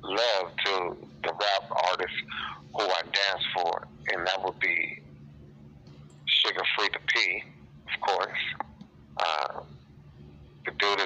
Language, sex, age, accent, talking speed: English, male, 50-69, American, 120 wpm